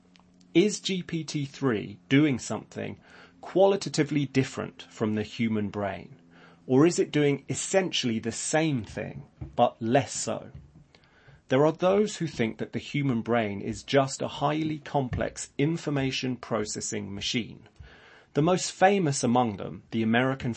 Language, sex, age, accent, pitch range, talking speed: English, male, 30-49, British, 110-150 Hz, 130 wpm